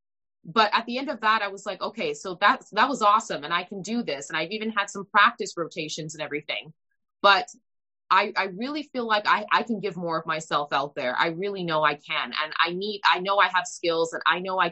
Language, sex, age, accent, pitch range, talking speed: English, female, 20-39, American, 165-215 Hz, 250 wpm